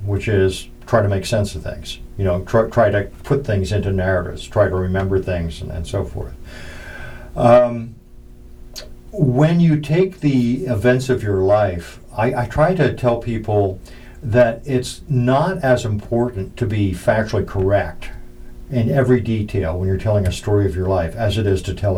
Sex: male